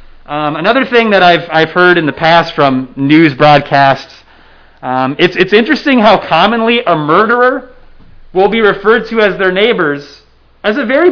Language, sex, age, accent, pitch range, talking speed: English, male, 30-49, American, 155-230 Hz, 165 wpm